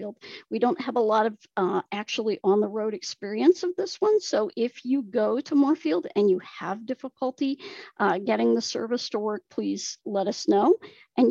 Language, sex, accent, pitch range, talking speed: English, female, American, 210-340 Hz, 190 wpm